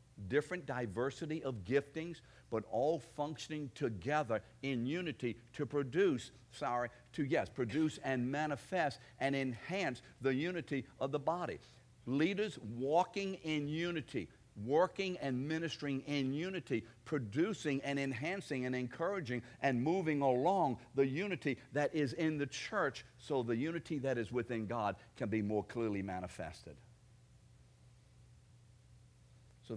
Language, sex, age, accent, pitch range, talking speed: English, male, 60-79, American, 110-145 Hz, 125 wpm